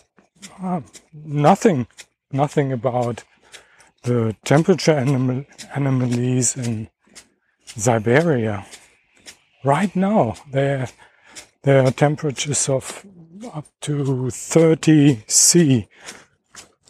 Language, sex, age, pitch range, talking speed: English, male, 60-79, 115-145 Hz, 80 wpm